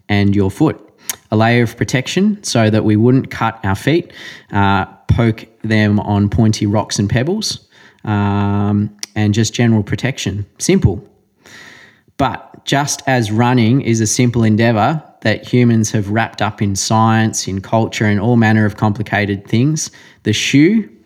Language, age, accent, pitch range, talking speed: English, 20-39, Australian, 105-125 Hz, 150 wpm